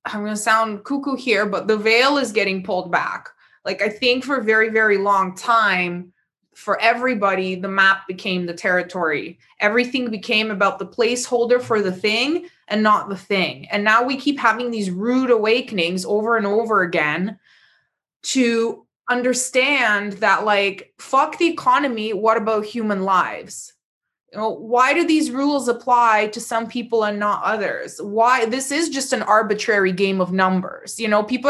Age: 20-39